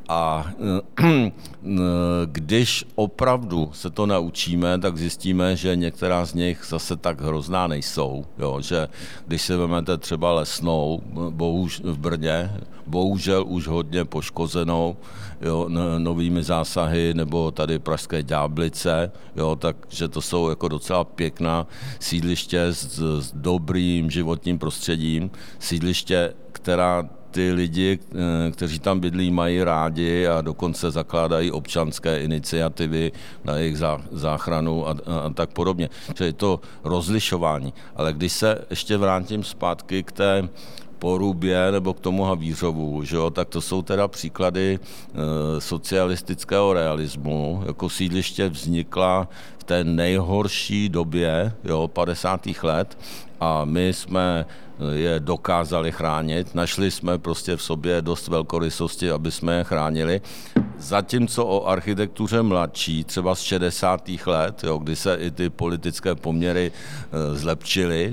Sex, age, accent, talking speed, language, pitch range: male, 60-79, native, 120 wpm, Czech, 80-90 Hz